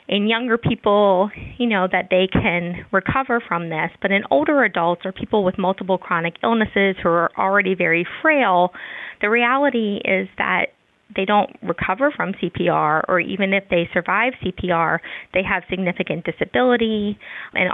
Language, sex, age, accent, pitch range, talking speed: English, female, 20-39, American, 175-210 Hz, 155 wpm